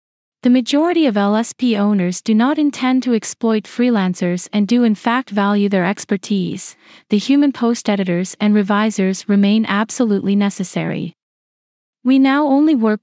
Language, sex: English, female